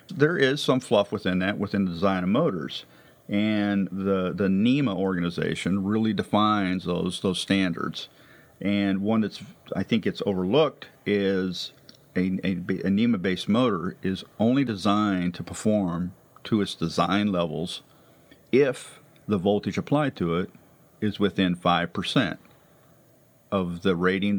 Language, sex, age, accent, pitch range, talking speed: English, male, 50-69, American, 95-120 Hz, 140 wpm